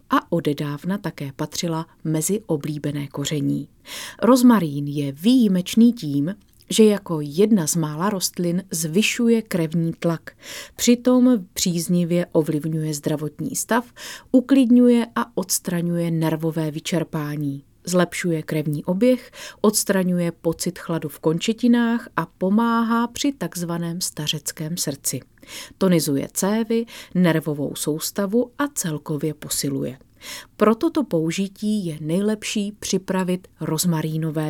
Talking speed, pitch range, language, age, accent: 100 wpm, 155-215 Hz, Czech, 30-49, native